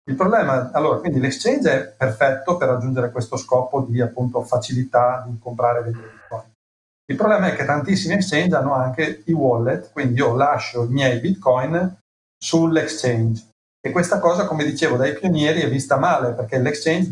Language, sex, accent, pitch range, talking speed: Italian, male, native, 125-150 Hz, 165 wpm